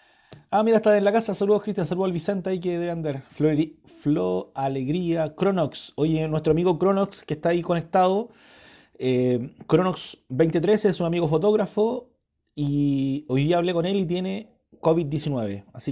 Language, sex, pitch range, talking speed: Spanish, male, 140-180 Hz, 160 wpm